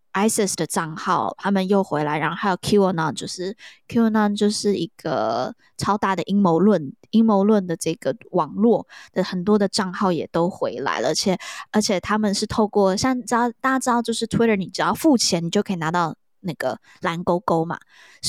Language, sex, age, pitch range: Chinese, female, 20-39, 185-230 Hz